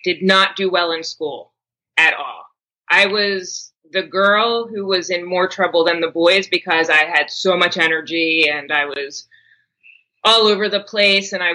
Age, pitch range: 30-49, 170-230 Hz